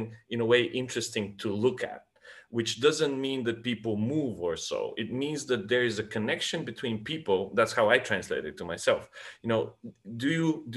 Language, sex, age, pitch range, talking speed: English, male, 30-49, 110-140 Hz, 200 wpm